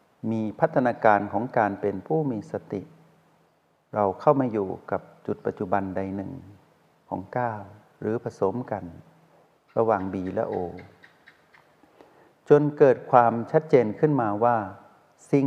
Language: Thai